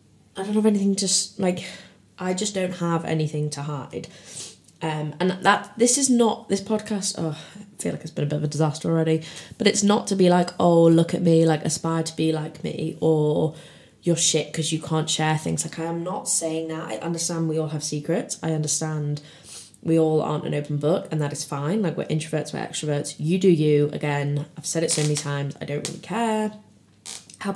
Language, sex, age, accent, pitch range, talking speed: English, female, 20-39, British, 150-175 Hz, 220 wpm